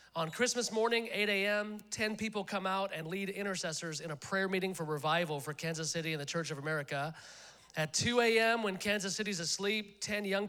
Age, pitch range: 40-59, 175-215 Hz